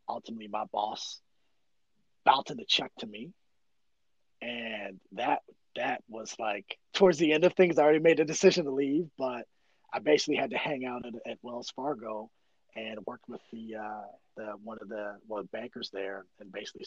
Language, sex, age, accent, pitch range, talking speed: English, male, 30-49, American, 105-130 Hz, 180 wpm